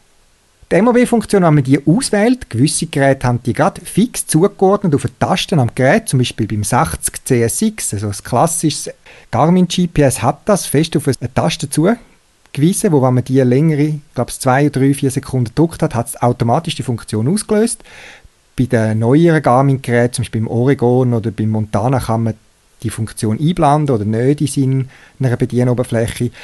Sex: male